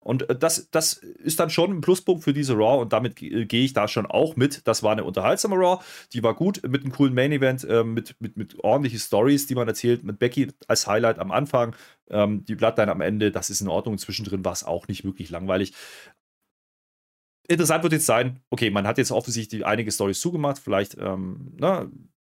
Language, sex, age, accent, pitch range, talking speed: German, male, 30-49, German, 100-130 Hz, 210 wpm